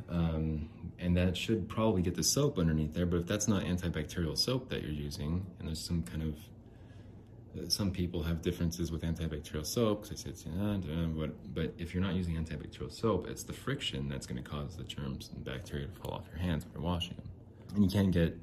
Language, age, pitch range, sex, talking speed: English, 30-49, 80-110 Hz, male, 220 wpm